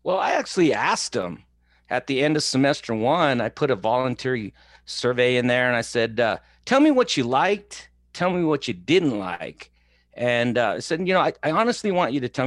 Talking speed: 220 wpm